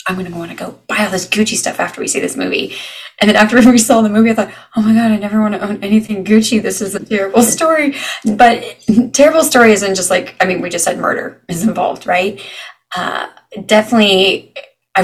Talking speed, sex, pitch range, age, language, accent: 230 wpm, female, 190-235 Hz, 20-39, English, American